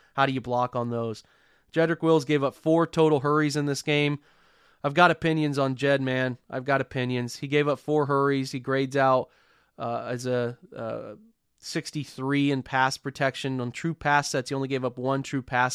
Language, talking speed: English, 200 wpm